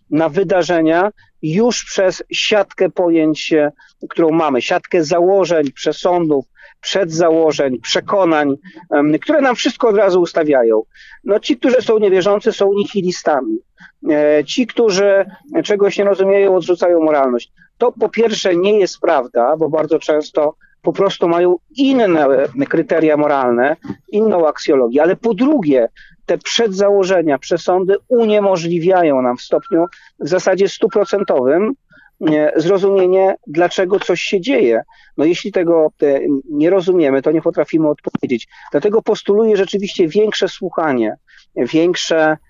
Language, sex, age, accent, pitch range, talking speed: Polish, male, 40-59, native, 160-205 Hz, 115 wpm